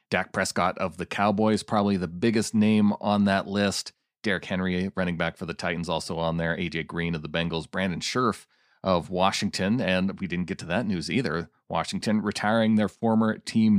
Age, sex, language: 40-59, male, English